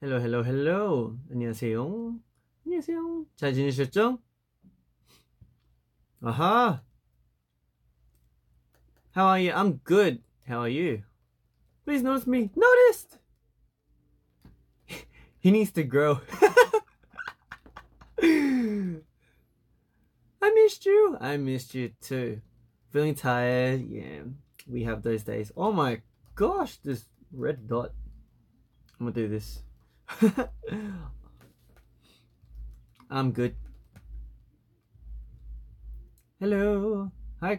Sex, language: male, Korean